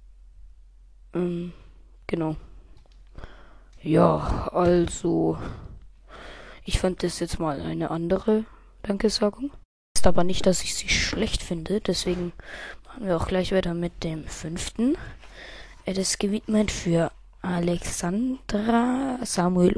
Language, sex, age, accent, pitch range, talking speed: German, female, 20-39, German, 165-200 Hz, 105 wpm